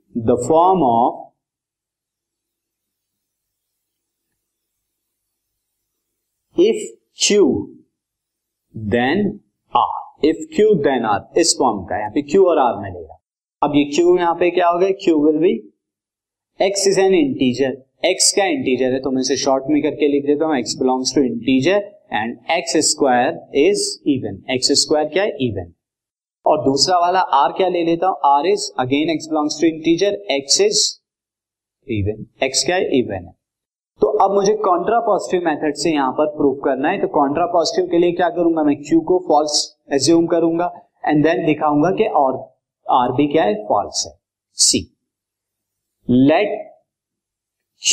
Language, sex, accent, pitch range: Hindi, male, native, 140-190 Hz